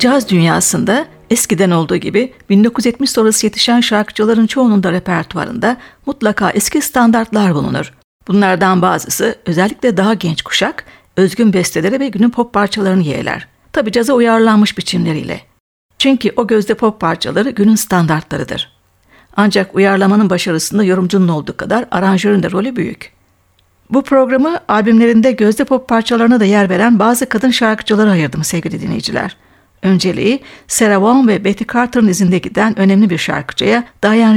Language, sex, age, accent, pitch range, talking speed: Turkish, female, 60-79, native, 190-240 Hz, 135 wpm